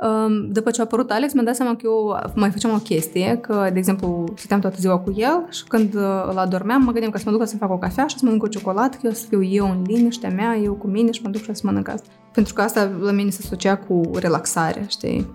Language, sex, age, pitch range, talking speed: Romanian, female, 20-39, 195-235 Hz, 280 wpm